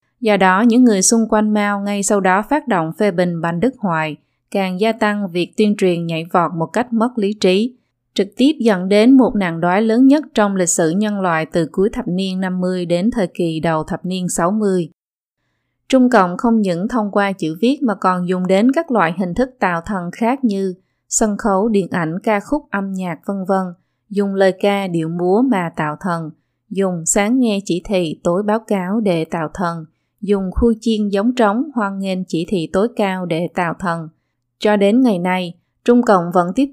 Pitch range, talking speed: 175-220 Hz, 205 wpm